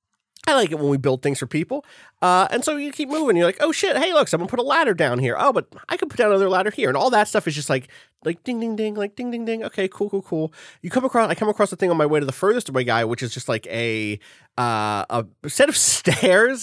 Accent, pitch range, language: American, 130-210 Hz, English